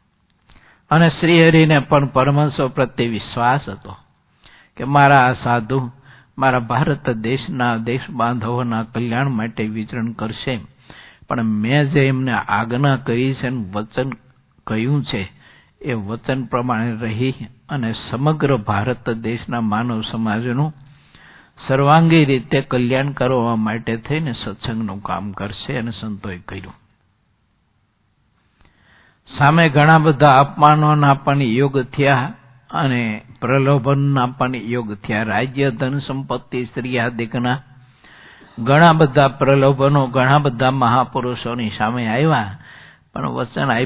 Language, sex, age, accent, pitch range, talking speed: English, male, 60-79, Indian, 110-135 Hz, 85 wpm